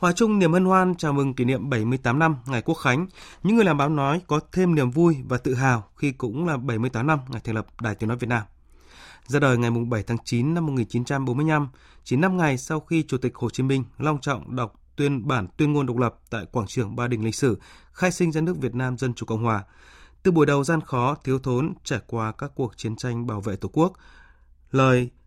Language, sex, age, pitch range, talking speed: Vietnamese, male, 20-39, 115-150 Hz, 240 wpm